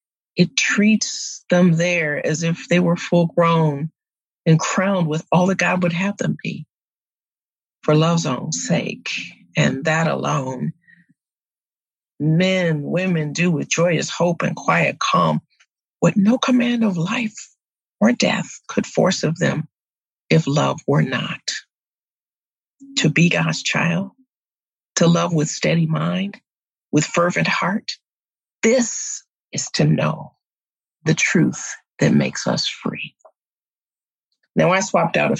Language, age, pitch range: English, 40-59, 160-190 Hz